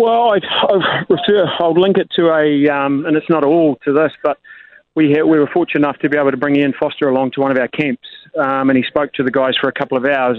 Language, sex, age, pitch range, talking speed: English, male, 30-49, 135-150 Hz, 275 wpm